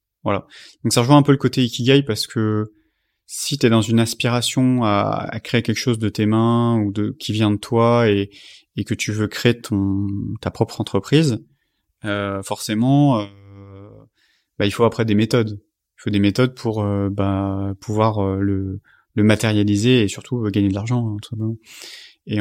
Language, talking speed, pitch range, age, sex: French, 185 wpm, 100-115 Hz, 30-49, male